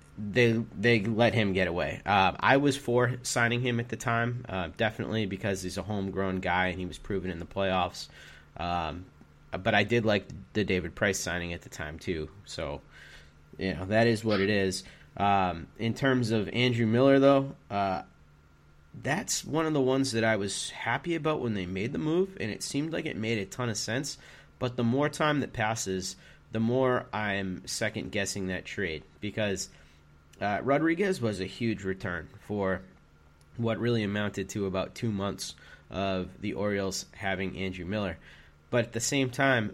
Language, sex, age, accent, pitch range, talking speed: English, male, 30-49, American, 95-115 Hz, 185 wpm